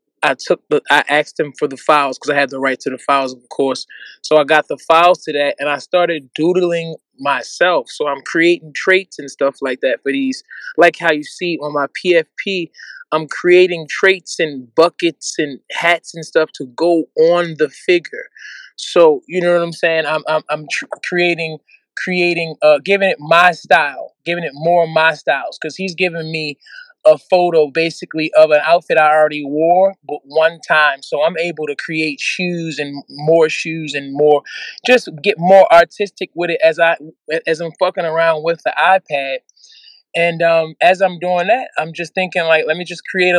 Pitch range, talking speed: 150-175 Hz, 195 wpm